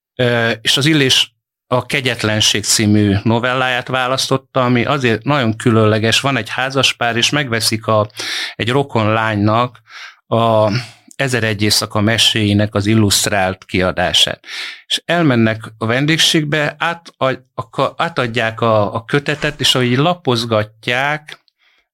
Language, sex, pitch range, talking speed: Hungarian, male, 110-130 Hz, 115 wpm